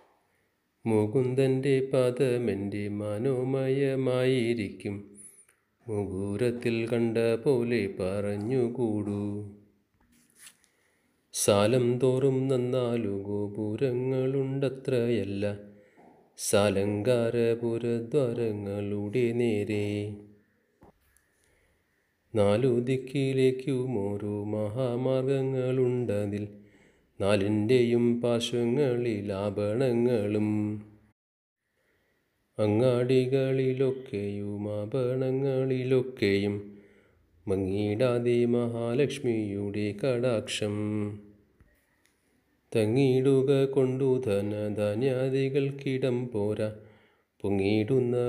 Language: Malayalam